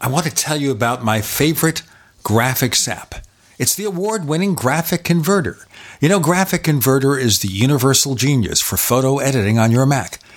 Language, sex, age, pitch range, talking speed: English, male, 50-69, 110-145 Hz, 170 wpm